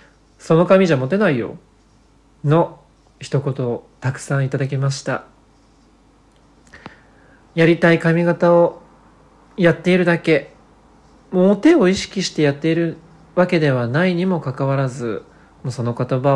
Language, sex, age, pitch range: Japanese, male, 40-59, 135-175 Hz